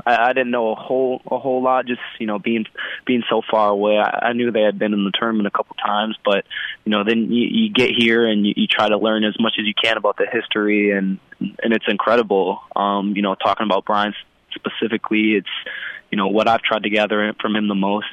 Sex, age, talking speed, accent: male, 20-39, 245 wpm, American